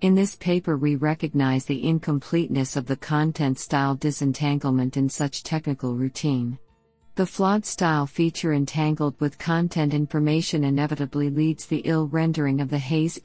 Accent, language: American, English